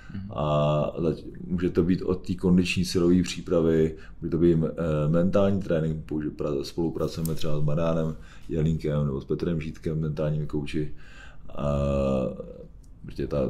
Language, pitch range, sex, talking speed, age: Czech, 75-85 Hz, male, 115 wpm, 30-49